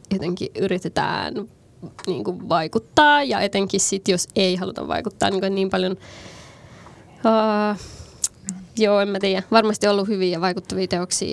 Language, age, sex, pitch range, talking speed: Finnish, 20-39, female, 185-210 Hz, 130 wpm